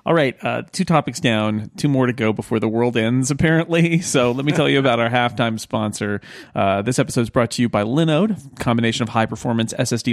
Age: 40-59